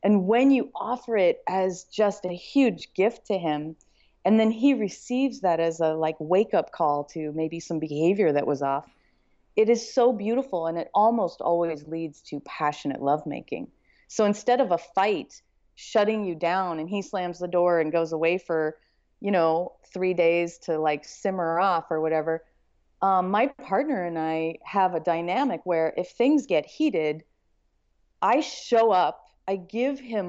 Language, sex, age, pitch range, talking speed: English, female, 30-49, 160-205 Hz, 175 wpm